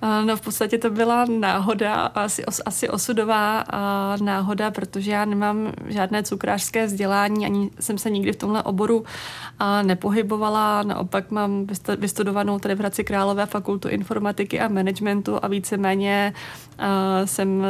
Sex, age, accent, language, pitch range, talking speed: female, 30-49, native, Czech, 200-215 Hz, 130 wpm